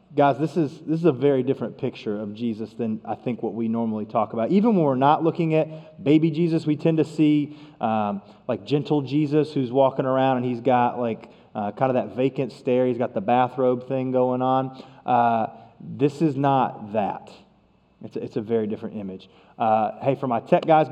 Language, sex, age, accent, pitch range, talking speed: English, male, 30-49, American, 120-165 Hz, 210 wpm